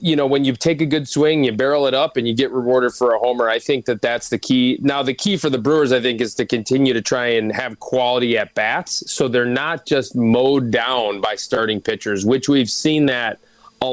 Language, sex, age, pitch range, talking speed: English, male, 20-39, 120-150 Hz, 240 wpm